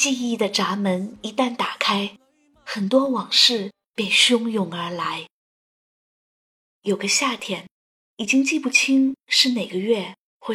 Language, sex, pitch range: Chinese, female, 190-260 Hz